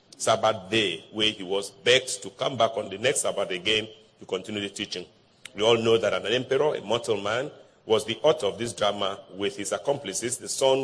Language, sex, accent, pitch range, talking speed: English, male, Nigerian, 100-135 Hz, 210 wpm